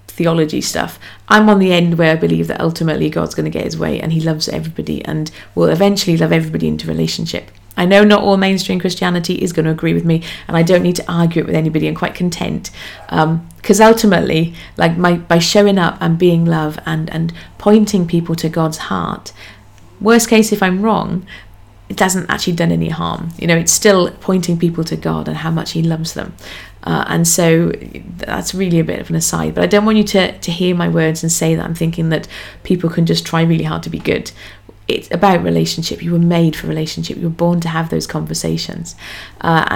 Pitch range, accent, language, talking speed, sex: 155-185 Hz, British, English, 220 wpm, female